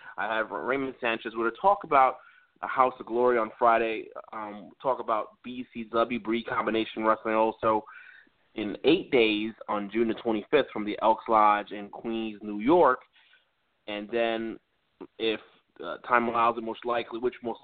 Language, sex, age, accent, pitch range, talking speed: English, male, 20-39, American, 110-130 Hz, 165 wpm